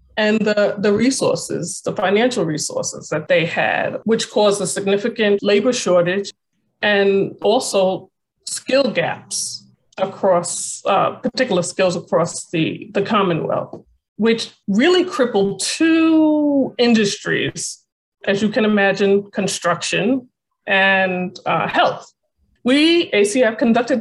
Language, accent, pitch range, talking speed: English, American, 195-235 Hz, 110 wpm